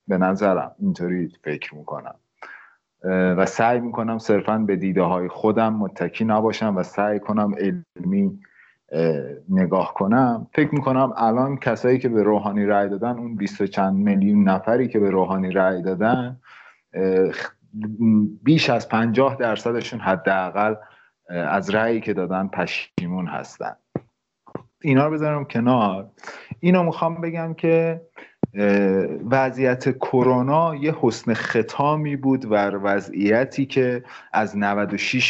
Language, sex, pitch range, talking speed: Persian, male, 105-140 Hz, 120 wpm